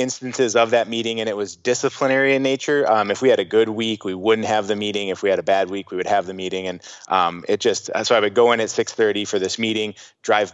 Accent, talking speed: American, 275 wpm